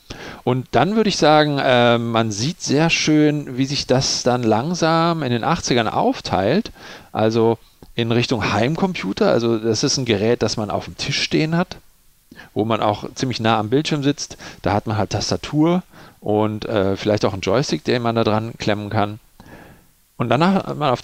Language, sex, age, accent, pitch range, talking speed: German, male, 40-59, German, 110-140 Hz, 185 wpm